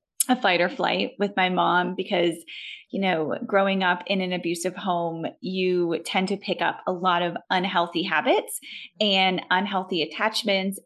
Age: 20-39